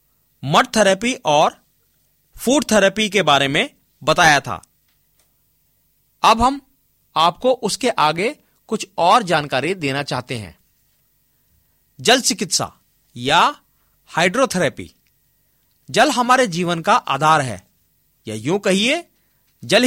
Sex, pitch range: male, 145-235 Hz